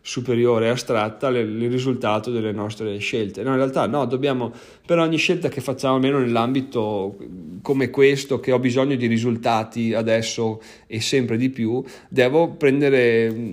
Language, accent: Italian, native